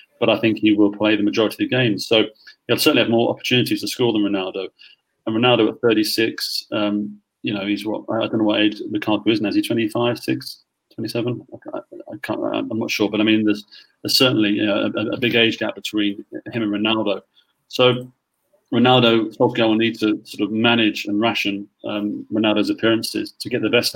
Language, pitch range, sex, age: English, 105-125 Hz, male, 30-49